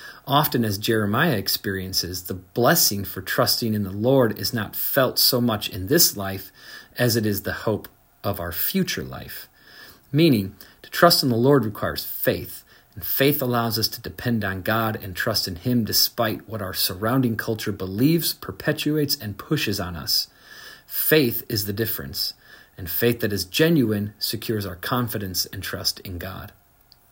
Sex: male